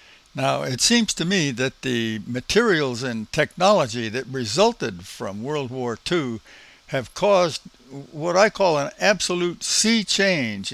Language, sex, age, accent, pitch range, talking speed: English, male, 60-79, American, 120-190 Hz, 140 wpm